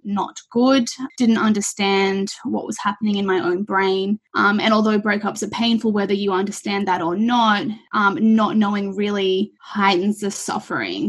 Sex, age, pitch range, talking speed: female, 20-39, 195-225 Hz, 160 wpm